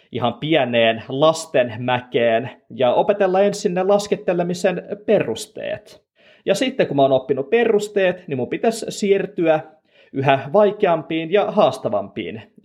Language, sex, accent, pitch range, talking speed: Finnish, male, native, 140-200 Hz, 115 wpm